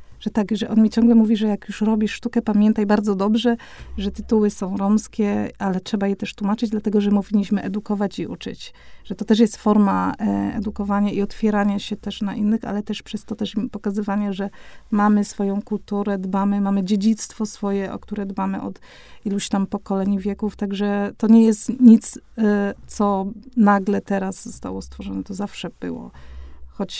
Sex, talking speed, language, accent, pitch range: female, 175 wpm, Polish, native, 200-220 Hz